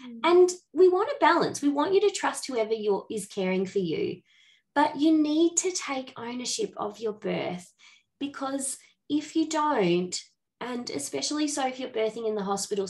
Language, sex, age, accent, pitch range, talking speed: English, female, 20-39, Australian, 205-290 Hz, 170 wpm